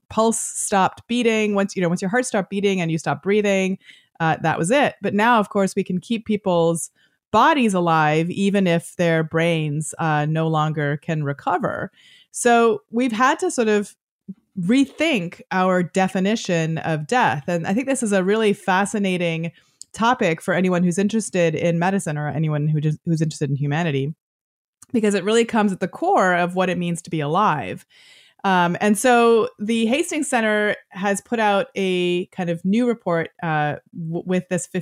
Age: 30-49